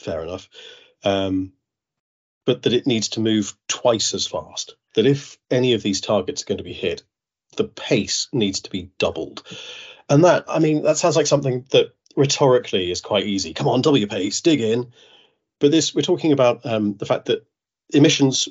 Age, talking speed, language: 30-49, 190 wpm, English